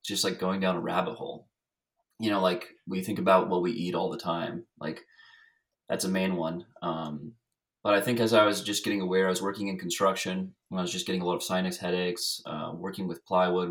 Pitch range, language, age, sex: 90-105 Hz, English, 20-39, male